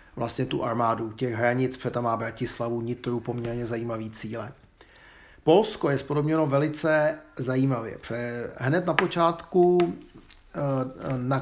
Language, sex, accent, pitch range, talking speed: Czech, male, native, 120-155 Hz, 115 wpm